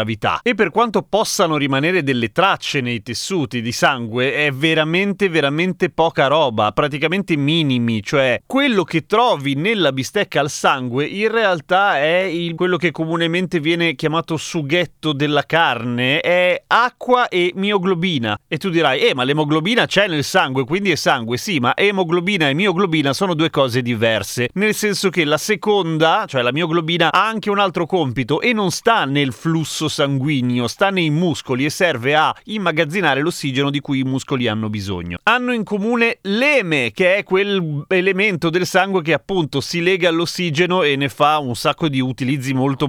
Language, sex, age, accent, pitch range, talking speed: Italian, male, 30-49, native, 140-185 Hz, 165 wpm